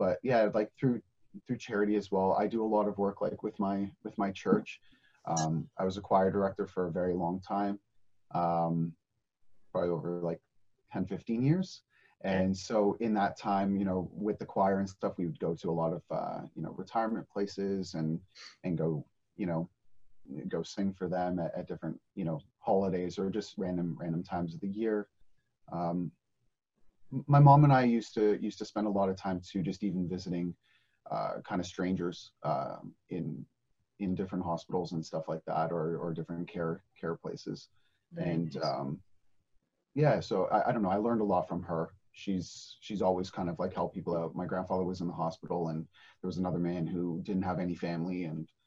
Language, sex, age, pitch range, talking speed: English, male, 30-49, 90-105 Hz, 200 wpm